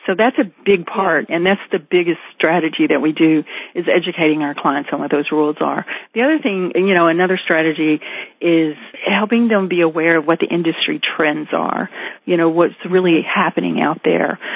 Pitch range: 165-185 Hz